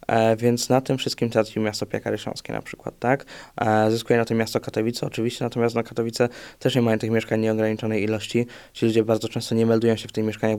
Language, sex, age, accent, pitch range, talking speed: Polish, male, 20-39, native, 110-120 Hz, 215 wpm